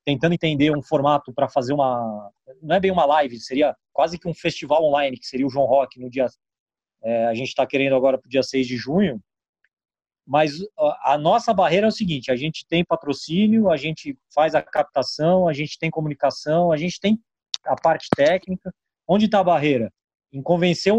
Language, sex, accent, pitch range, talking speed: Portuguese, male, Brazilian, 140-180 Hz, 195 wpm